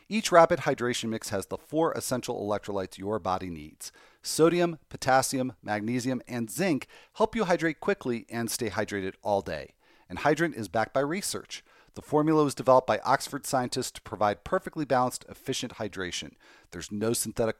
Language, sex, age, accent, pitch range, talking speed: English, male, 40-59, American, 110-165 Hz, 165 wpm